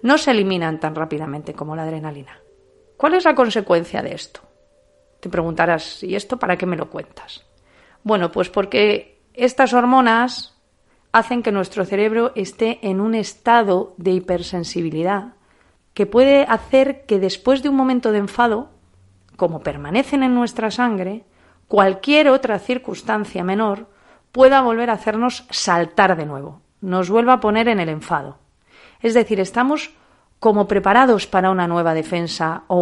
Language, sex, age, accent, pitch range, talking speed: Spanish, female, 40-59, Spanish, 175-240 Hz, 150 wpm